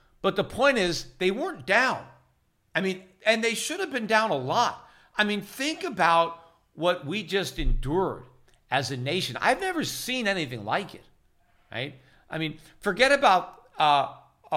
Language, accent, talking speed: English, American, 165 wpm